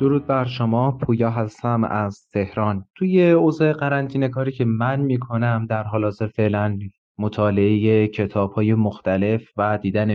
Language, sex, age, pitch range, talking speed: Persian, male, 30-49, 105-120 Hz, 140 wpm